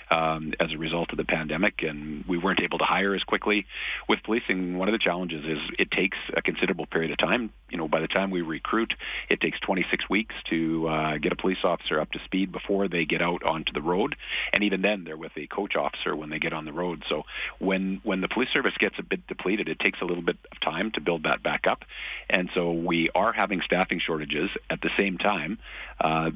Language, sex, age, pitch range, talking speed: English, male, 40-59, 80-95 Hz, 235 wpm